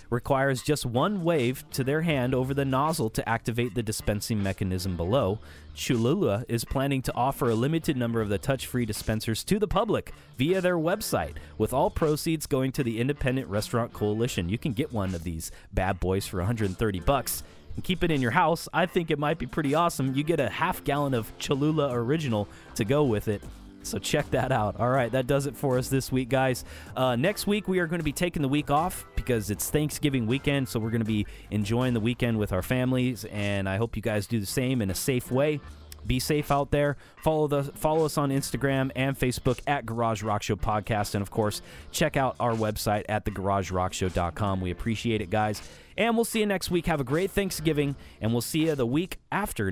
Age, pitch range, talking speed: 30-49, 105-150 Hz, 215 wpm